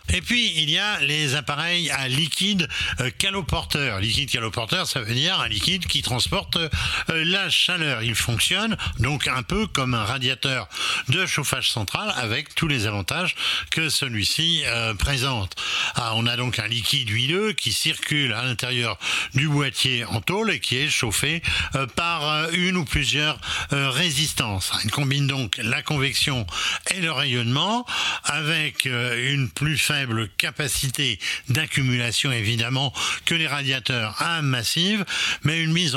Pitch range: 120-165 Hz